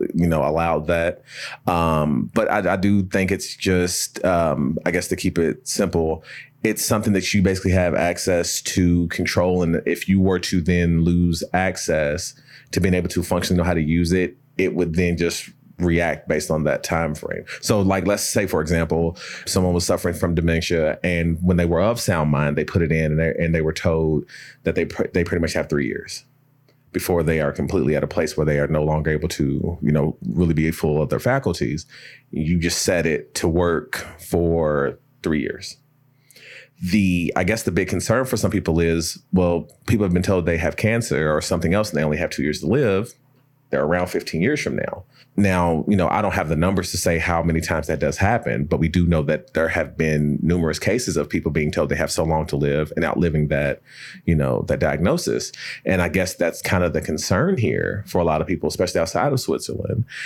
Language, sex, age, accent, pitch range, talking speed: English, male, 30-49, American, 80-95 Hz, 220 wpm